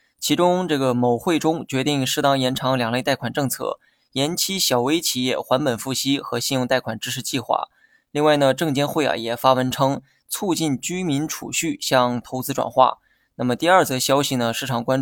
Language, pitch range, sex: Chinese, 130-160 Hz, male